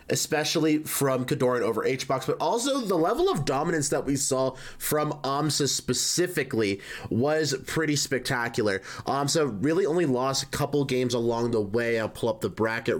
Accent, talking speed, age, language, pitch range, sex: American, 160 wpm, 20-39, English, 105-135 Hz, male